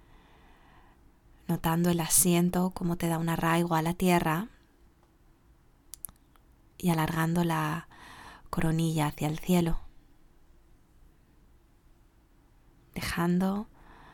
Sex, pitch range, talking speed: female, 155-175 Hz, 80 wpm